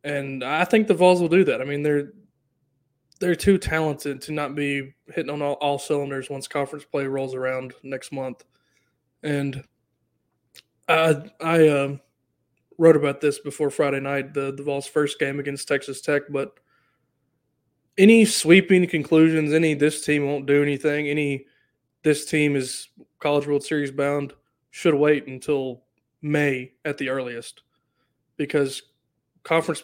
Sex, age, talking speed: male, 20-39, 150 wpm